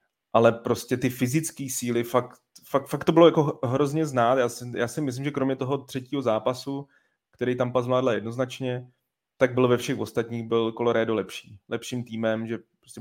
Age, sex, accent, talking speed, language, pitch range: 30-49, male, native, 185 wpm, Czech, 115-125 Hz